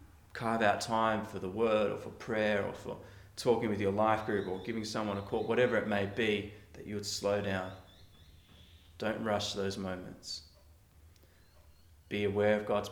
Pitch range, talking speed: 90-115 Hz, 175 wpm